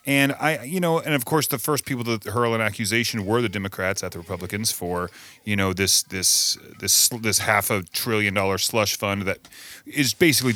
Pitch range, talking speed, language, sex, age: 100-150 Hz, 205 wpm, English, male, 30-49